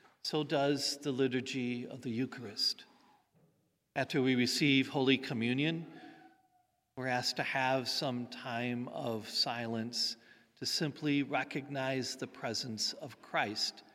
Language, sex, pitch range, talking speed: English, male, 120-145 Hz, 115 wpm